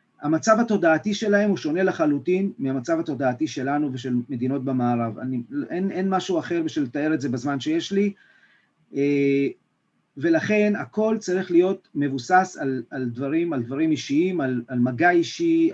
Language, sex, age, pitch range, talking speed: Hebrew, male, 40-59, 150-215 Hz, 150 wpm